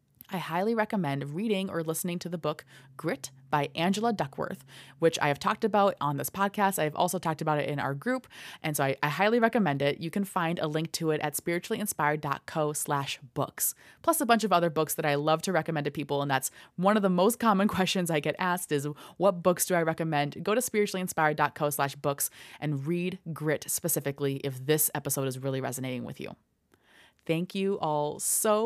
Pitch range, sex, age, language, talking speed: 145-195 Hz, female, 20-39, English, 205 wpm